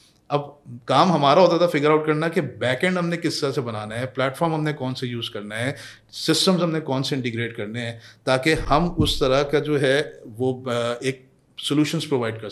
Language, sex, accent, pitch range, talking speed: Hindi, male, native, 120-150 Hz, 205 wpm